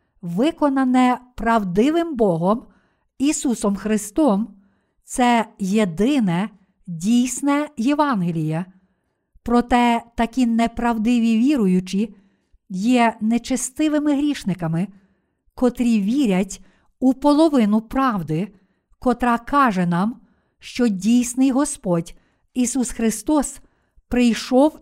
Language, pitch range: Ukrainian, 205-260 Hz